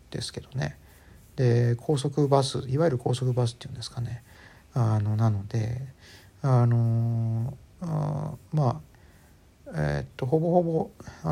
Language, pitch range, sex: Japanese, 110-140 Hz, male